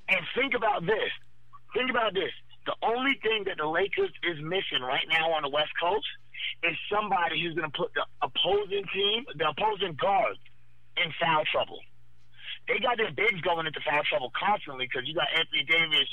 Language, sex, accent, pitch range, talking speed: English, male, American, 160-225 Hz, 185 wpm